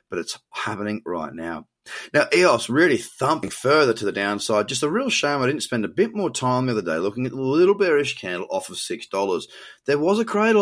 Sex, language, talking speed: male, English, 230 wpm